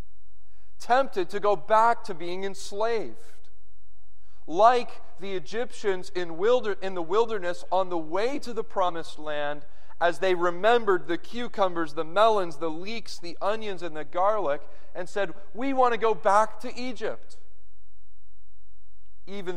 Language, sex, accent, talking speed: English, male, American, 140 wpm